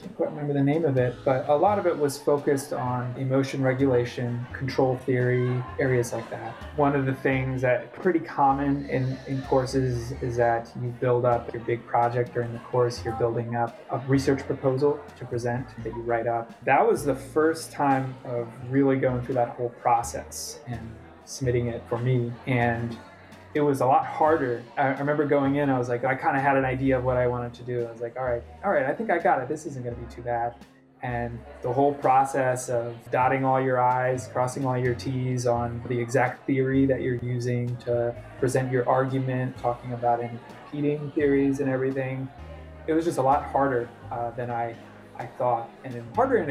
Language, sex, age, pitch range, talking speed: English, male, 20-39, 120-135 Hz, 210 wpm